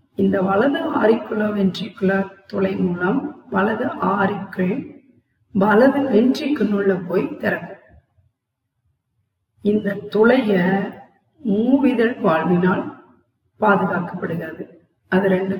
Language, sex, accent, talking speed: Tamil, female, native, 75 wpm